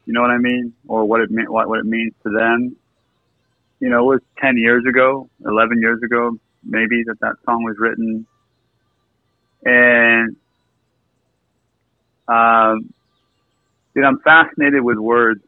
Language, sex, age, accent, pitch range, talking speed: English, male, 30-49, American, 110-125 Hz, 150 wpm